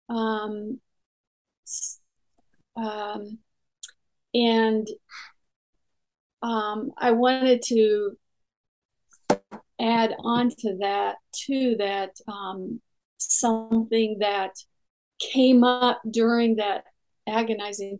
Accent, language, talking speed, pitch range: American, English, 70 wpm, 210-245 Hz